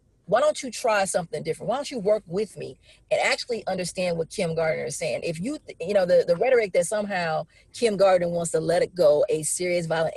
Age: 40-59